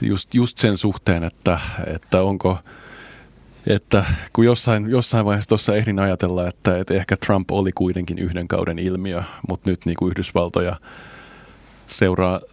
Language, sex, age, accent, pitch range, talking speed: Finnish, male, 30-49, native, 90-105 Hz, 145 wpm